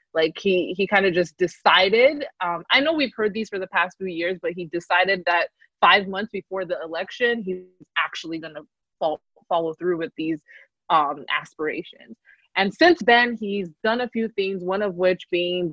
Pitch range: 170-205 Hz